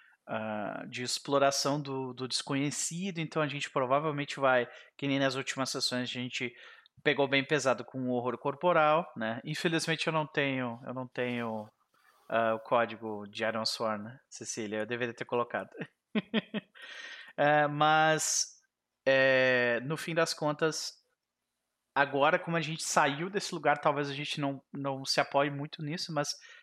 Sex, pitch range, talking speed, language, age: male, 125-165 Hz, 160 wpm, Portuguese, 20-39